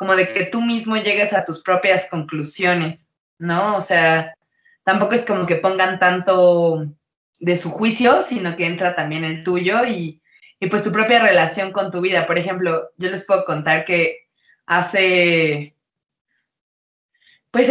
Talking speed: 155 wpm